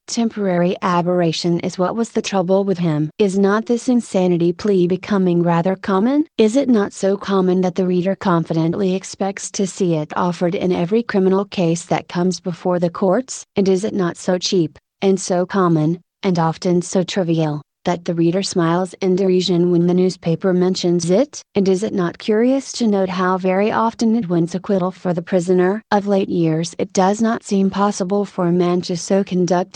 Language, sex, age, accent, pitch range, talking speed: English, female, 30-49, American, 175-195 Hz, 190 wpm